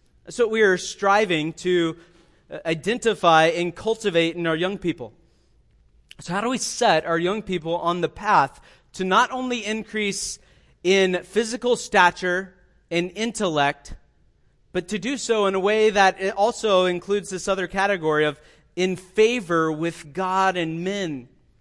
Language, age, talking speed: English, 30-49, 145 wpm